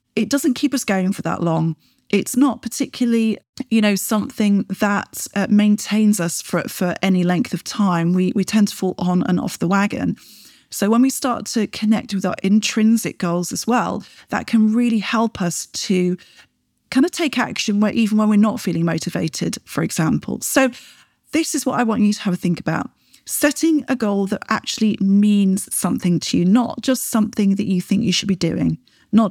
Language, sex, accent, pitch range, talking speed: English, female, British, 185-230 Hz, 200 wpm